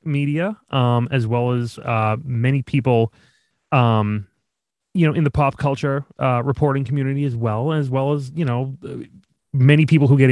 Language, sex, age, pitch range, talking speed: English, male, 30-49, 110-140 Hz, 170 wpm